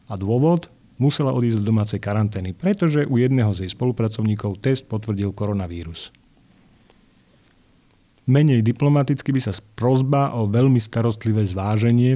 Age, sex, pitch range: 40-59, male, 105-125 Hz